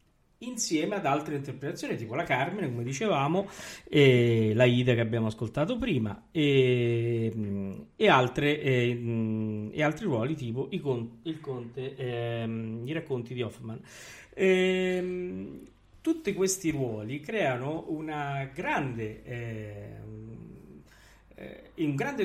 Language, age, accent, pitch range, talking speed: Italian, 50-69, native, 115-155 Hz, 100 wpm